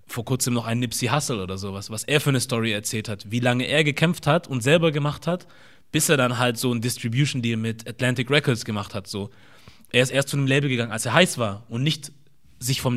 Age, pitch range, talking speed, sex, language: 30-49, 115-140 Hz, 240 wpm, male, German